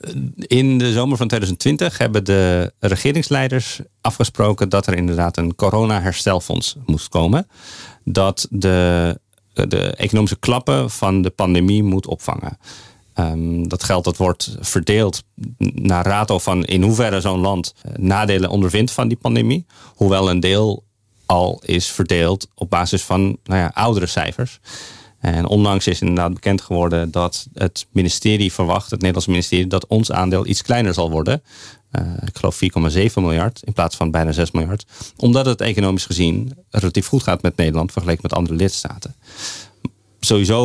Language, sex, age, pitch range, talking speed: Dutch, male, 40-59, 90-110 Hz, 150 wpm